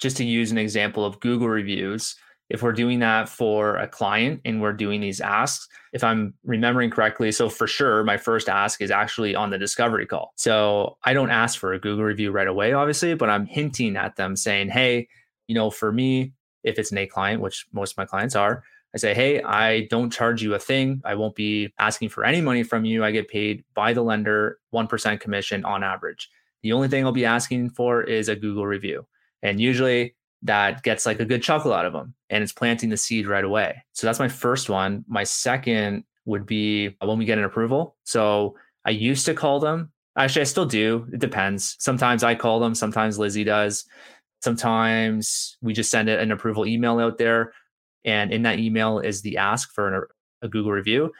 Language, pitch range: English, 105-120 Hz